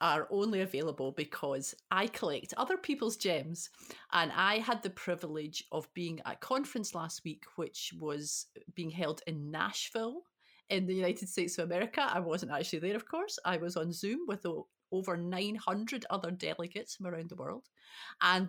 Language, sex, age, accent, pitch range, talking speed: English, female, 30-49, British, 165-205 Hz, 175 wpm